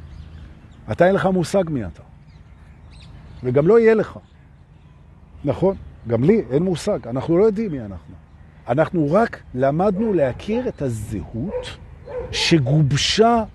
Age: 50-69